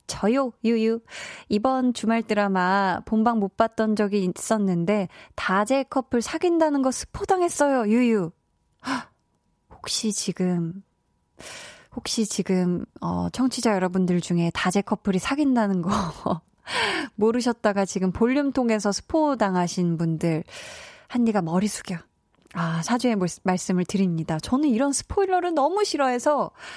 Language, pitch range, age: Korean, 185-255 Hz, 20-39